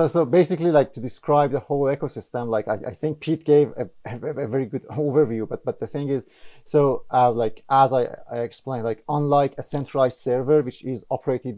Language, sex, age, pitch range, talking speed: English, male, 30-49, 120-145 Hz, 200 wpm